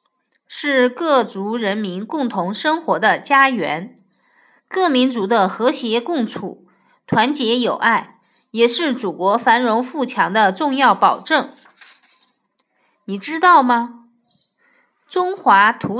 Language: Chinese